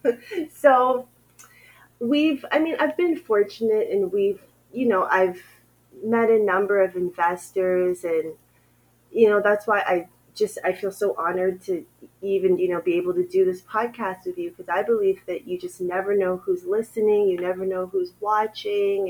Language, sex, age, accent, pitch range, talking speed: English, female, 30-49, American, 175-290 Hz, 175 wpm